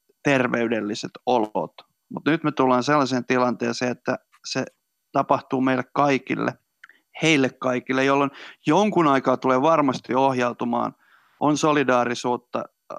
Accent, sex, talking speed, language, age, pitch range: native, male, 105 wpm, Finnish, 30-49, 120-140 Hz